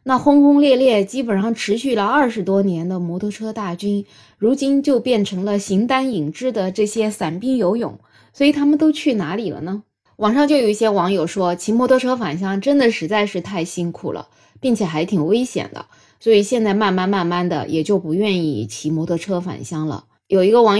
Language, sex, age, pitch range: Chinese, female, 20-39, 170-240 Hz